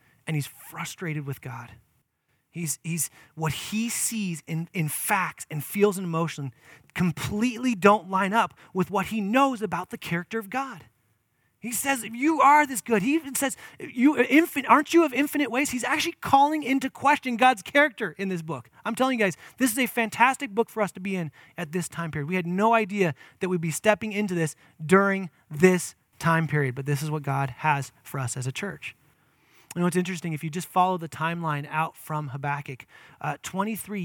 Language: English